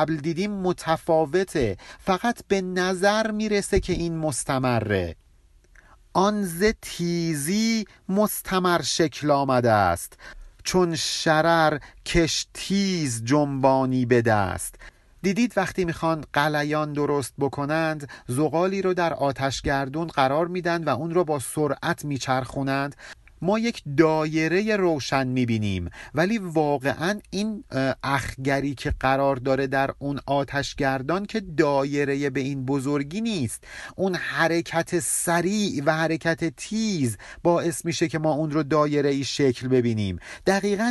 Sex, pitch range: male, 135-175 Hz